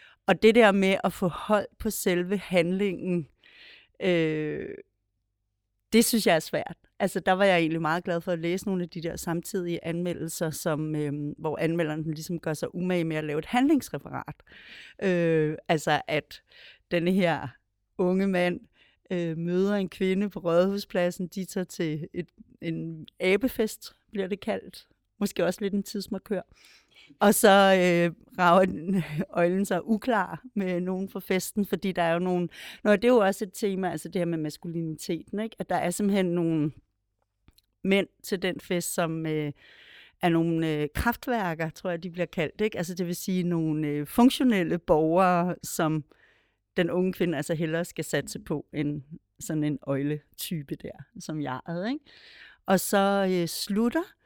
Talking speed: 170 wpm